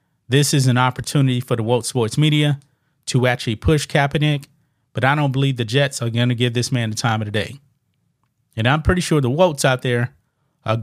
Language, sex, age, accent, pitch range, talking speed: English, male, 30-49, American, 125-150 Hz, 215 wpm